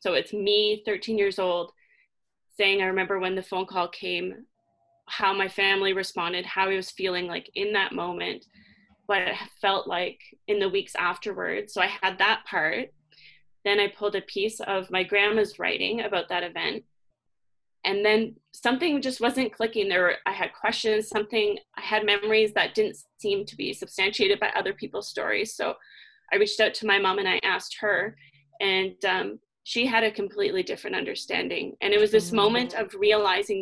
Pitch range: 190-225 Hz